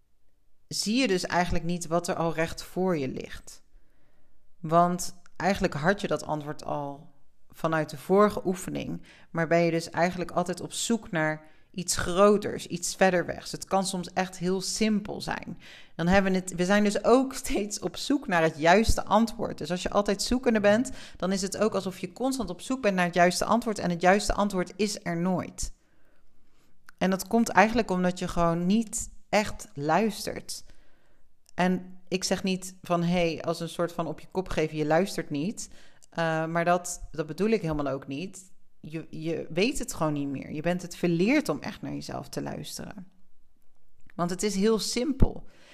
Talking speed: 190 wpm